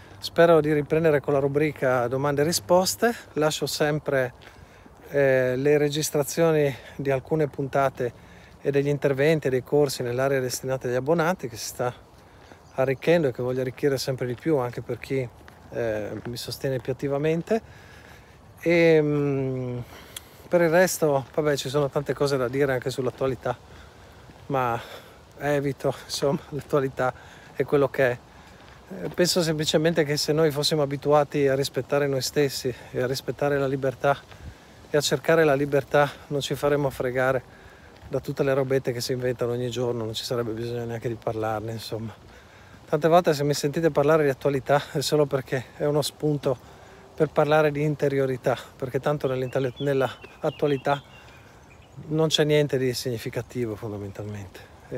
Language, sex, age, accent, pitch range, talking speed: Italian, male, 40-59, native, 125-150 Hz, 150 wpm